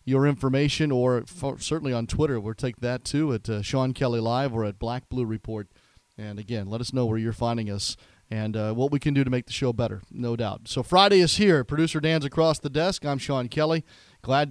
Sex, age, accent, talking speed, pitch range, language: male, 40-59, American, 230 wpm, 120-160 Hz, English